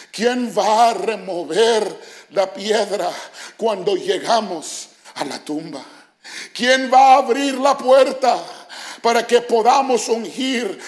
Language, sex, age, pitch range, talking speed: English, male, 50-69, 235-305 Hz, 115 wpm